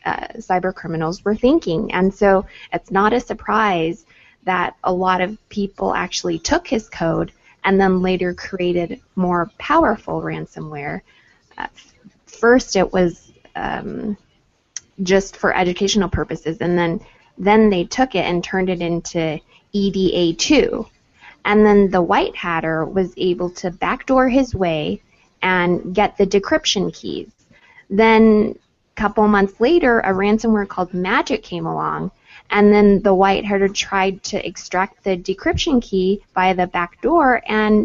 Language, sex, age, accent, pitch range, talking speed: English, female, 20-39, American, 175-215 Hz, 140 wpm